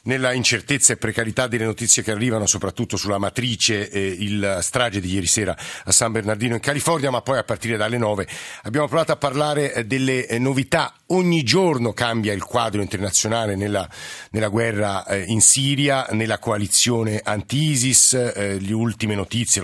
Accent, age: native, 50-69